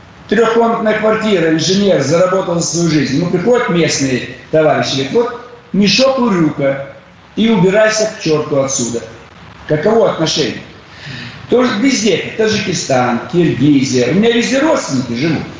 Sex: male